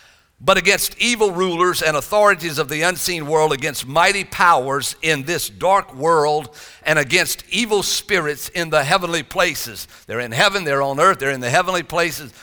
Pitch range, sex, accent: 150-195 Hz, male, American